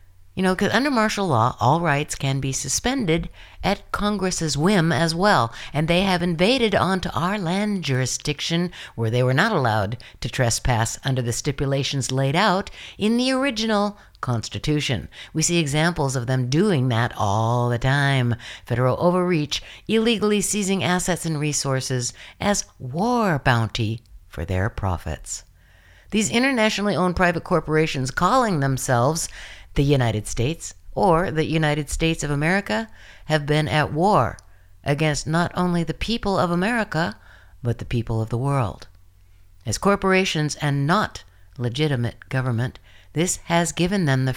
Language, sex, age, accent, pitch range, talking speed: English, female, 60-79, American, 120-185 Hz, 145 wpm